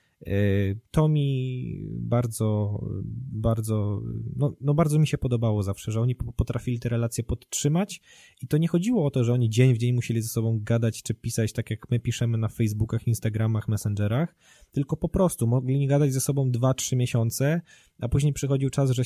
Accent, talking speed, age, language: native, 185 wpm, 20-39, Polish